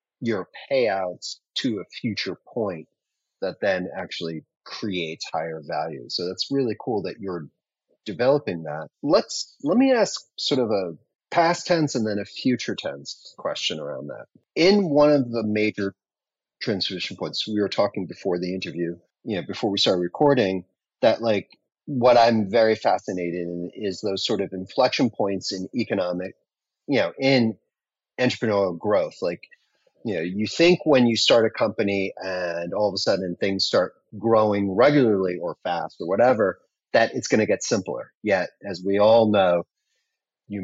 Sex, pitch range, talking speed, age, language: male, 90-115 Hz, 165 wpm, 30-49, English